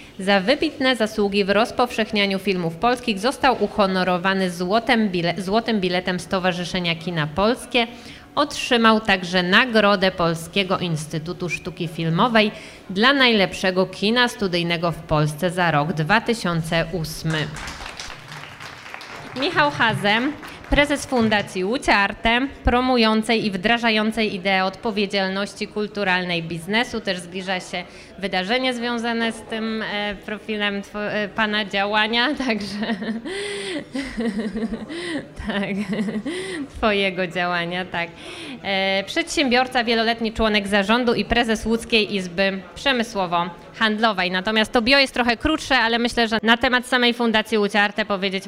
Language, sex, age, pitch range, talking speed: Polish, female, 20-39, 190-225 Hz, 105 wpm